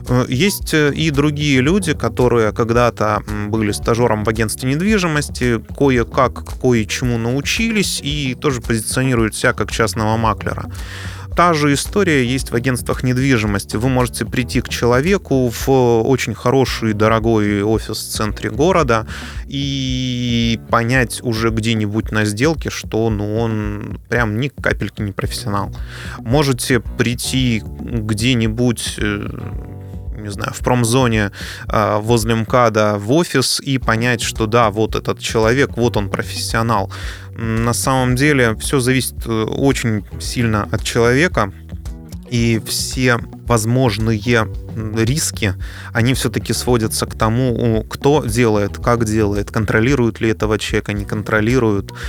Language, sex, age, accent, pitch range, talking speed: Russian, male, 20-39, native, 105-125 Hz, 120 wpm